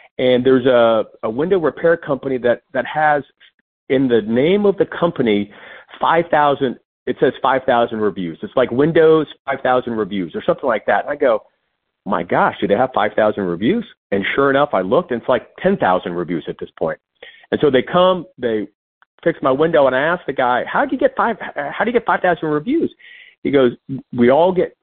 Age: 40-59